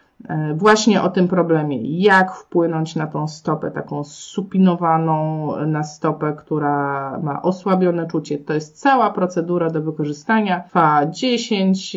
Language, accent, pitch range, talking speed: Polish, native, 155-185 Hz, 125 wpm